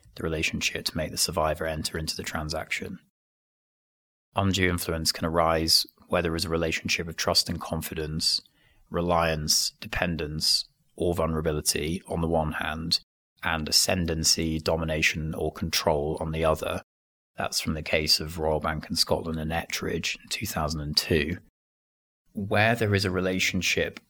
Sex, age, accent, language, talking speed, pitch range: male, 30-49, British, English, 140 wpm, 80-90 Hz